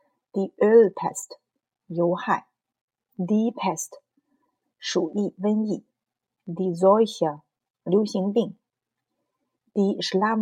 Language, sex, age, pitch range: Chinese, female, 30-49, 170-215 Hz